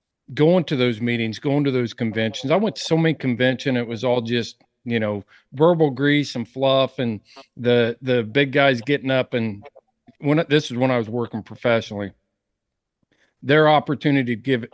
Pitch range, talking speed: 115-140 Hz, 180 wpm